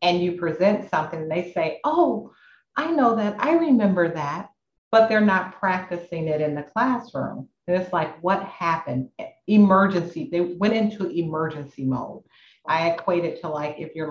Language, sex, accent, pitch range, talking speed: English, female, American, 160-220 Hz, 170 wpm